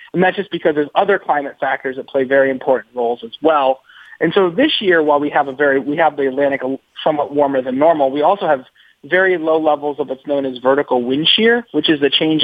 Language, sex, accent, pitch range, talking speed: English, male, American, 130-170 Hz, 235 wpm